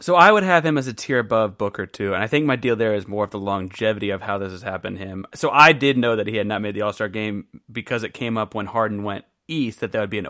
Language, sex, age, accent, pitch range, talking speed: English, male, 30-49, American, 100-135 Hz, 320 wpm